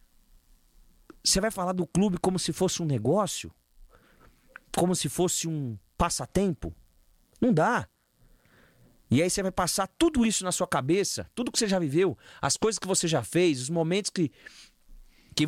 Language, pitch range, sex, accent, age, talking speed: Portuguese, 145-210 Hz, male, Brazilian, 40-59, 165 wpm